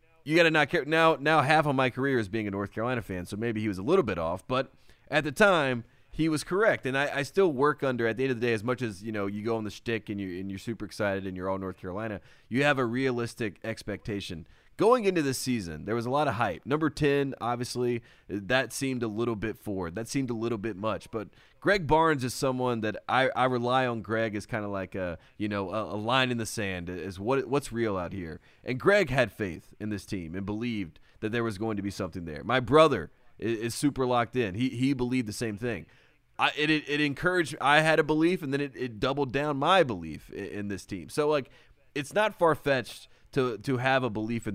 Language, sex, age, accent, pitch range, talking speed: English, male, 30-49, American, 105-135 Hz, 250 wpm